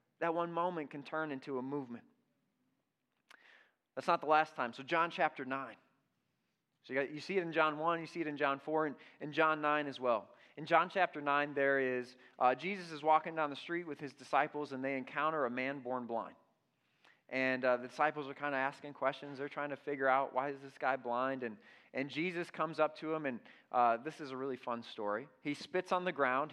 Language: English